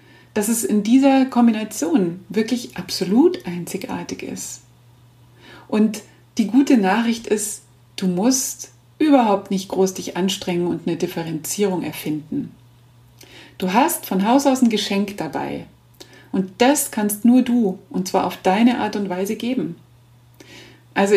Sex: female